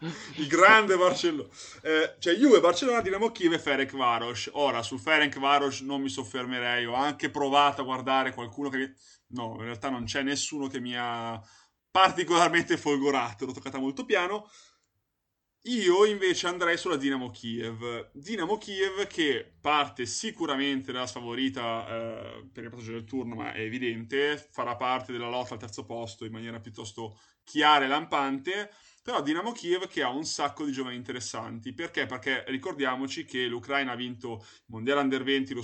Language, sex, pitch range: Italian, male, 120-150 Hz